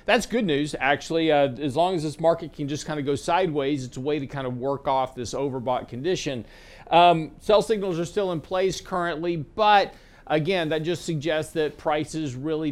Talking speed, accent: 205 wpm, American